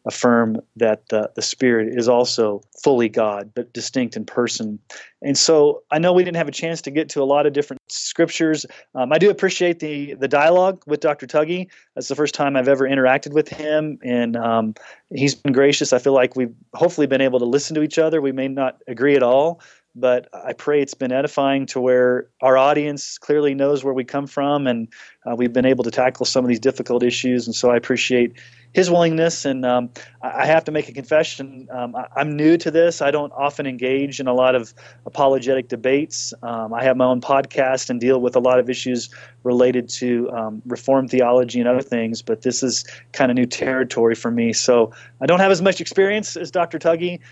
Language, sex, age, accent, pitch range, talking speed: English, male, 30-49, American, 120-145 Hz, 215 wpm